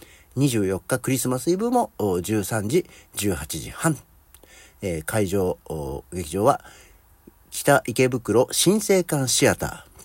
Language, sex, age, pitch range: Japanese, male, 50-69, 85-140 Hz